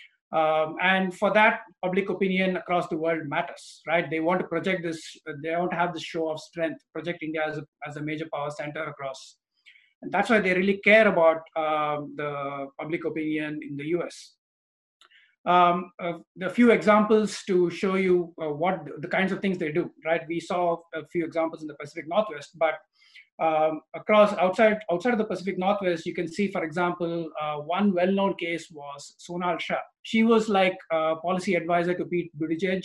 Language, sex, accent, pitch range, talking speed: English, male, Indian, 155-180 Hz, 190 wpm